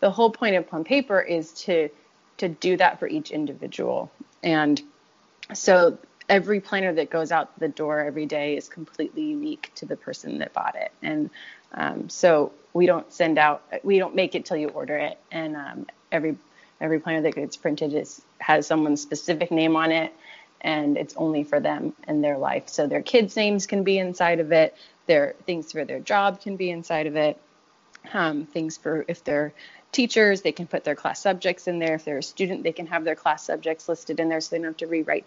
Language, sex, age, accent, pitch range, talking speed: English, female, 20-39, American, 155-190 Hz, 210 wpm